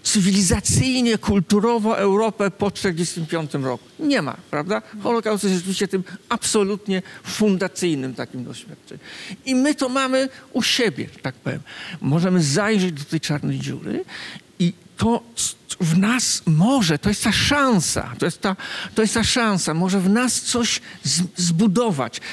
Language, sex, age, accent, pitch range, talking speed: Polish, male, 50-69, native, 165-225 Hz, 140 wpm